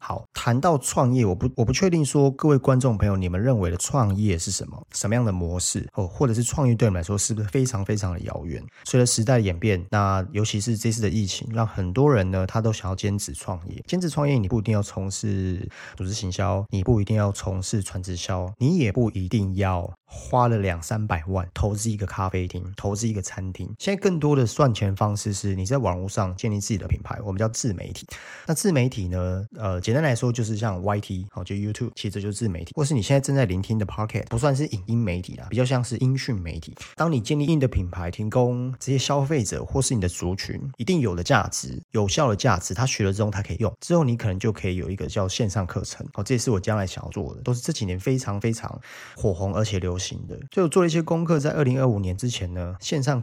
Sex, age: male, 30-49